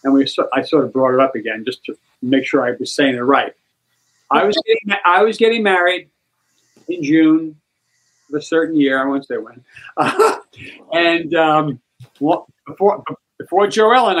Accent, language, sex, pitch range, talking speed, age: American, English, male, 140-205 Hz, 185 wpm, 50-69